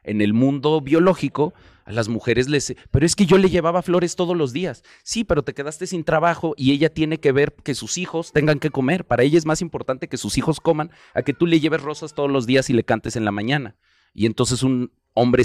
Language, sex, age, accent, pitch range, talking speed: Spanish, male, 30-49, Mexican, 110-155 Hz, 245 wpm